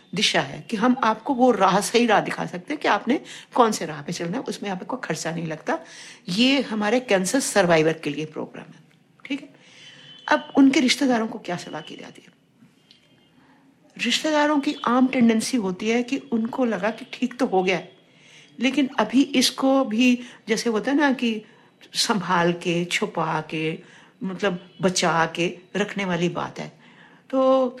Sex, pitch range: female, 185-255 Hz